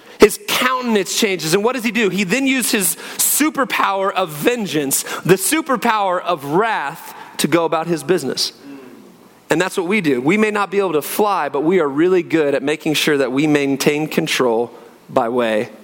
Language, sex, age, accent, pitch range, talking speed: English, male, 30-49, American, 185-245 Hz, 190 wpm